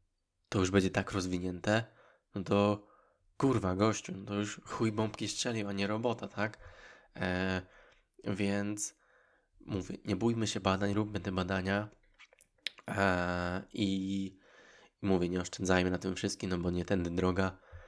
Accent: native